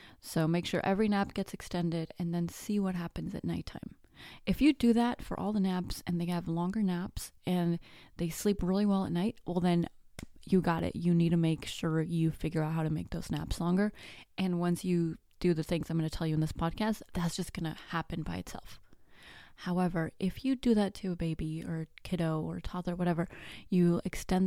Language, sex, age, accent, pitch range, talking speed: English, female, 20-39, American, 160-185 Hz, 220 wpm